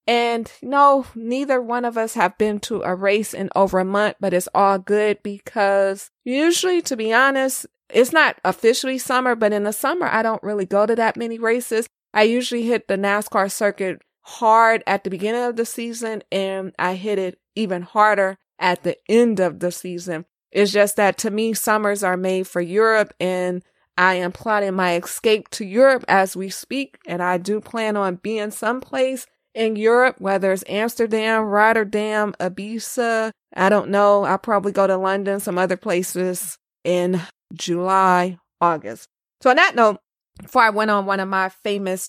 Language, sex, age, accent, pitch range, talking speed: English, female, 20-39, American, 190-235 Hz, 180 wpm